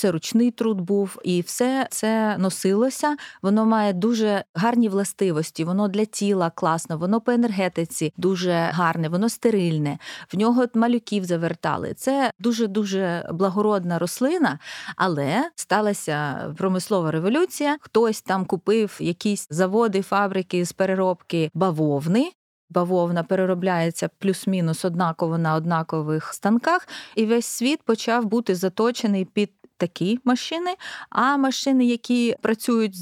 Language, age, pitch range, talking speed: Ukrainian, 30-49, 185-240 Hz, 120 wpm